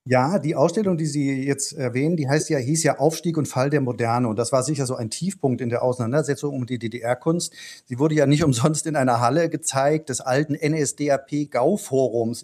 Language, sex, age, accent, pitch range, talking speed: German, male, 50-69, German, 125-150 Hz, 205 wpm